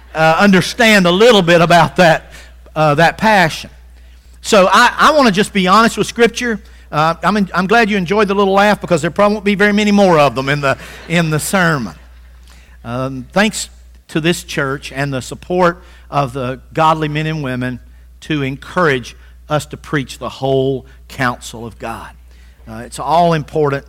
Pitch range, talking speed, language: 125-175 Hz, 185 wpm, English